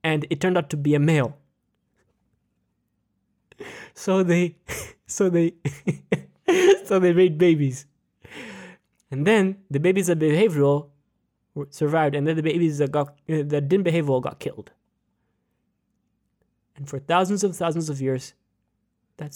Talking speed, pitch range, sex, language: 135 wpm, 135-175 Hz, male, English